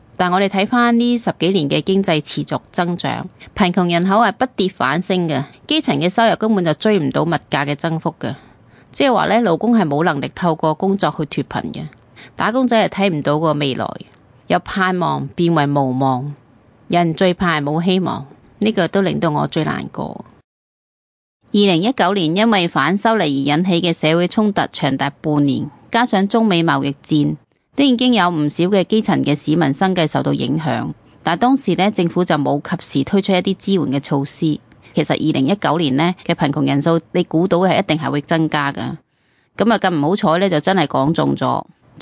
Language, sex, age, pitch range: Chinese, female, 30-49, 145-195 Hz